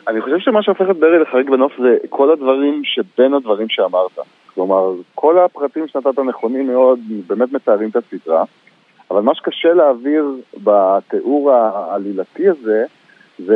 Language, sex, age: Hebrew, male, 50-69